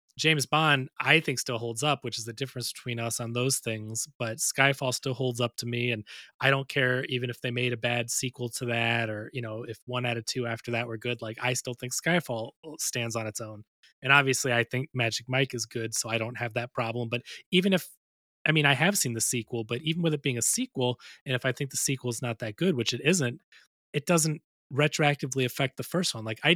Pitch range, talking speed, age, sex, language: 120-145 Hz, 250 wpm, 20-39, male, English